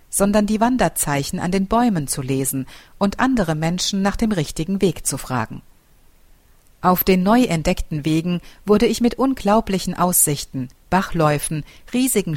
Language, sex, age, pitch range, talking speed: German, female, 50-69, 145-200 Hz, 140 wpm